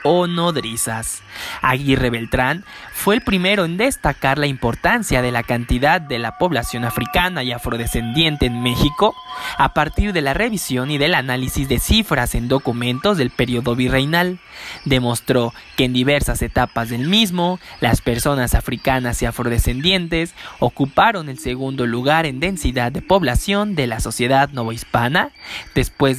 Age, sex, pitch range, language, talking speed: 20-39, male, 120-170 Hz, Spanish, 140 wpm